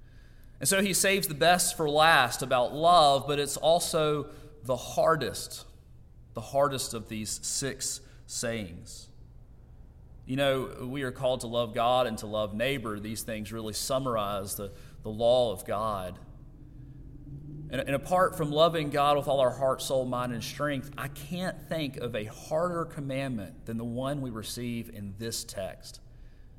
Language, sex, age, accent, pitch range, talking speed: English, male, 30-49, American, 115-145 Hz, 160 wpm